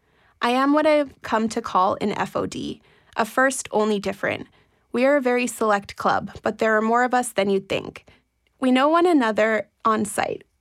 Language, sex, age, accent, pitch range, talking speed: English, female, 20-39, American, 210-245 Hz, 190 wpm